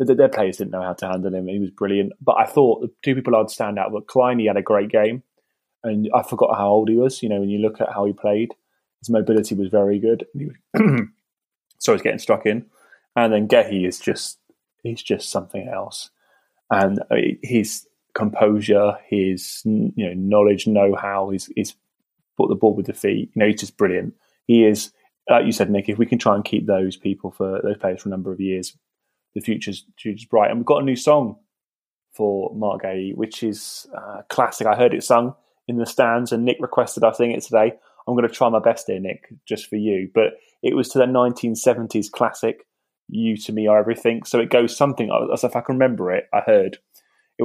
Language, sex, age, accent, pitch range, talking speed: English, male, 20-39, British, 100-125 Hz, 215 wpm